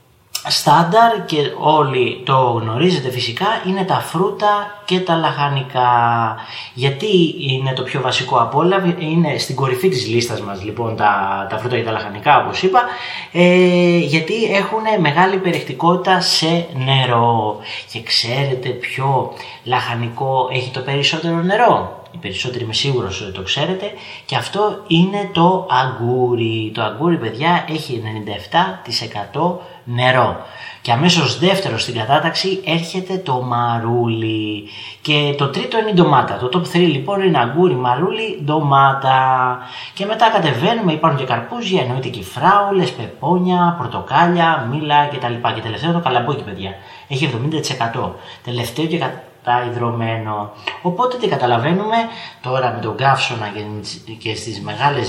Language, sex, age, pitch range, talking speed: Greek, male, 30-49, 120-175 Hz, 135 wpm